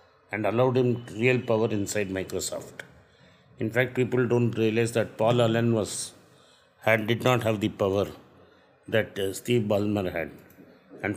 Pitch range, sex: 100-120 Hz, male